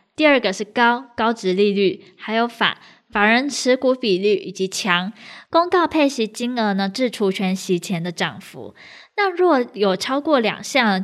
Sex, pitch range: female, 195-255 Hz